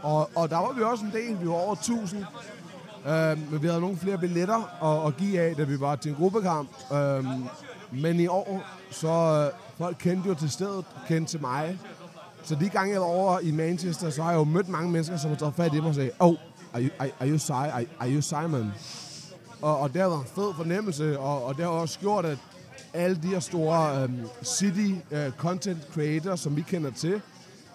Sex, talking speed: male, 210 wpm